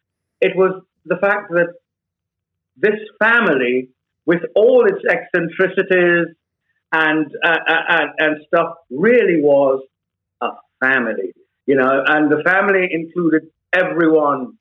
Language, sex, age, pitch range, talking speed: English, male, 60-79, 155-205 Hz, 110 wpm